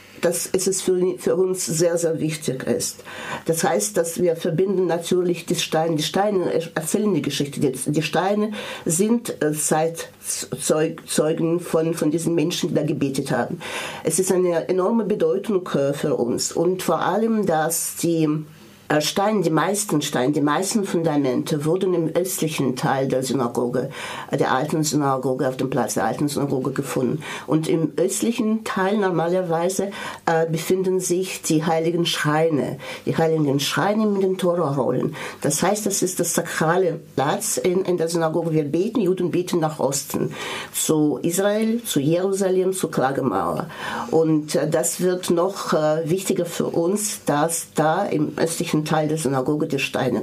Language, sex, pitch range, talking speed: German, female, 150-185 Hz, 150 wpm